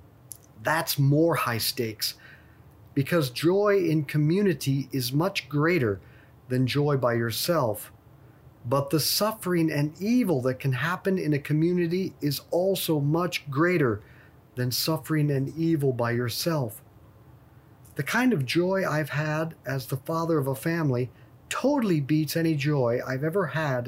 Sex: male